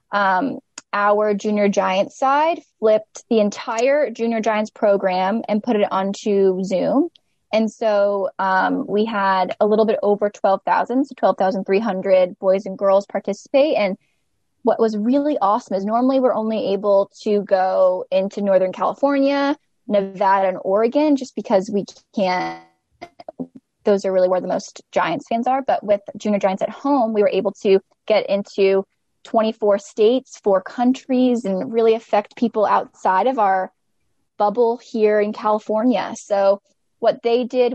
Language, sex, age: English, female, 10-29